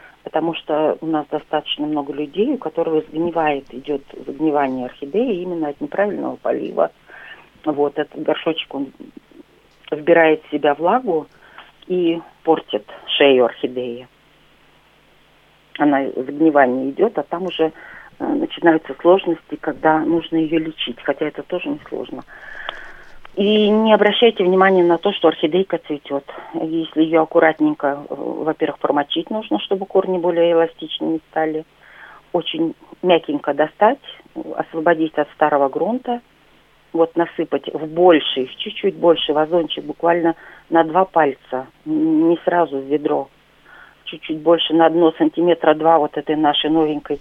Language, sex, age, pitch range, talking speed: Russian, female, 40-59, 150-175 Hz, 125 wpm